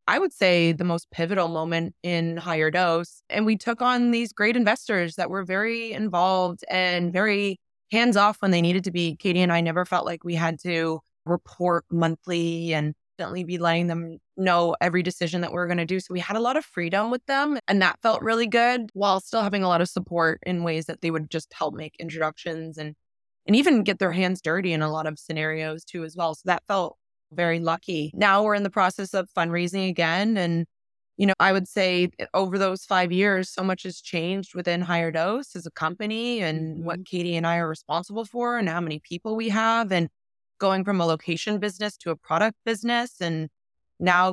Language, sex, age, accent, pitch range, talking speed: English, female, 20-39, American, 165-205 Hz, 215 wpm